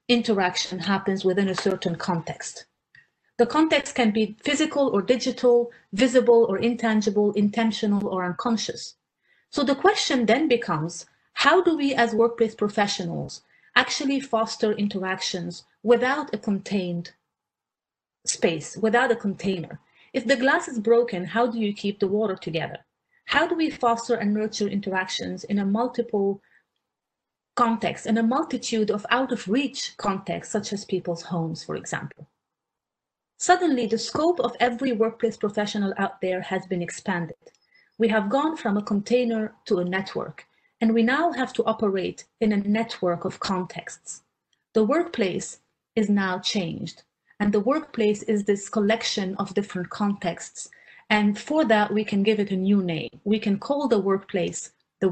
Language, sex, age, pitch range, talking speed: English, female, 30-49, 195-240 Hz, 150 wpm